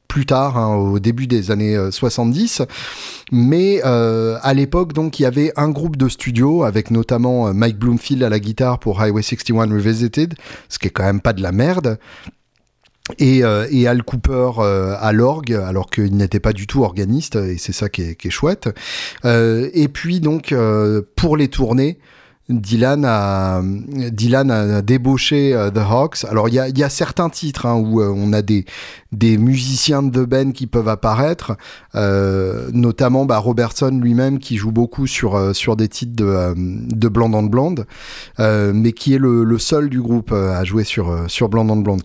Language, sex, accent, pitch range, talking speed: French, male, French, 105-135 Hz, 195 wpm